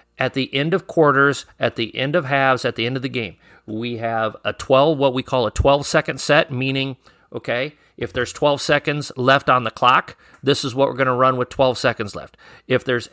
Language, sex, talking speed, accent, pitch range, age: English, male, 230 wpm, American, 120-140 Hz, 40-59